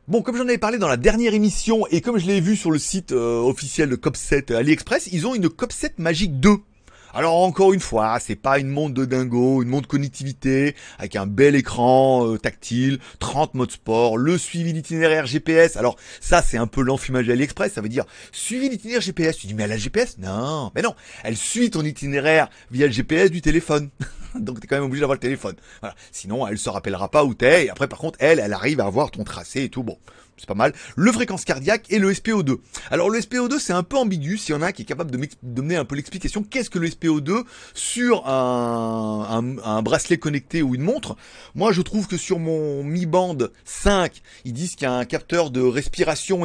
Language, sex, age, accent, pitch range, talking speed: French, male, 30-49, French, 125-185 Hz, 230 wpm